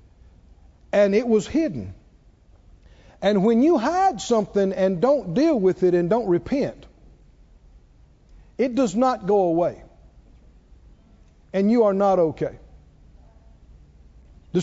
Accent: American